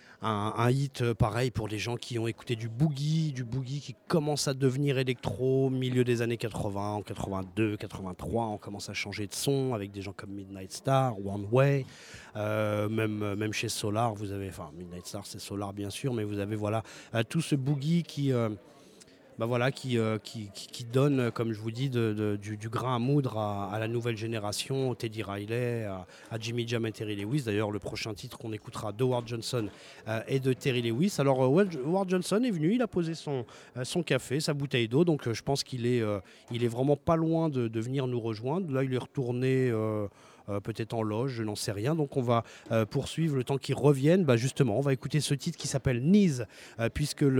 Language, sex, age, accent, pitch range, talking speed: French, male, 30-49, French, 110-140 Hz, 225 wpm